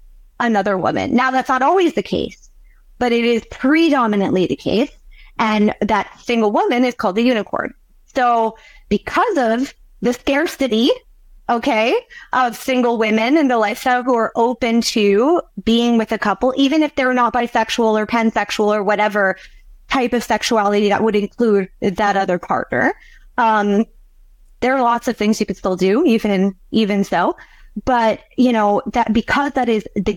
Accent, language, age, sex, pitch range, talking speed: American, English, 30-49, female, 210-255 Hz, 160 wpm